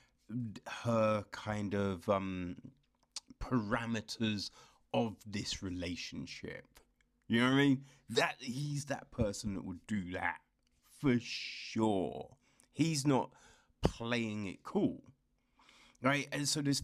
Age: 30-49